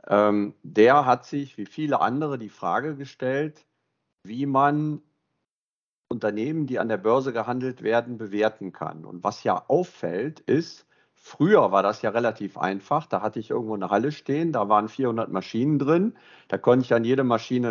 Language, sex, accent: German, male, German